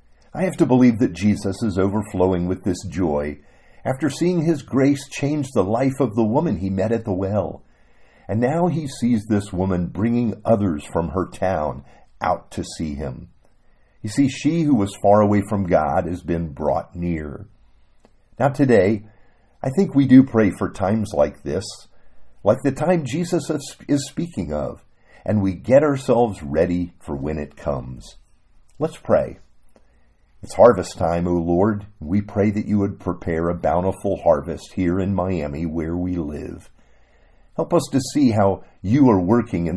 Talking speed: 170 wpm